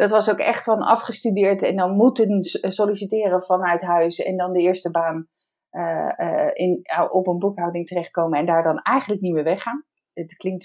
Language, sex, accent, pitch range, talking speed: Dutch, female, Dutch, 175-210 Hz, 185 wpm